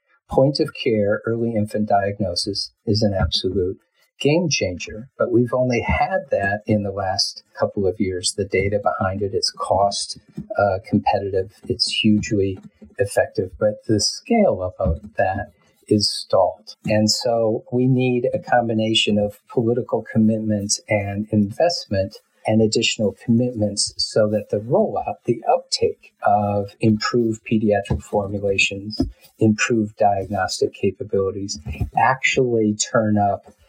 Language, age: English, 50-69